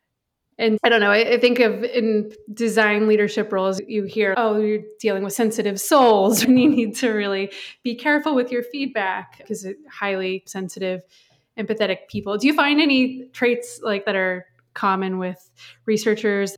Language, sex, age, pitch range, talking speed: English, female, 20-39, 185-215 Hz, 165 wpm